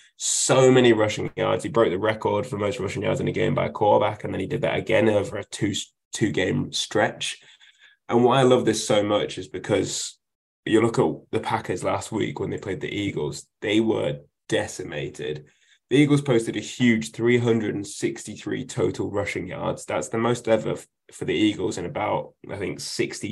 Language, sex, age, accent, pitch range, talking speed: English, male, 10-29, British, 105-125 Hz, 190 wpm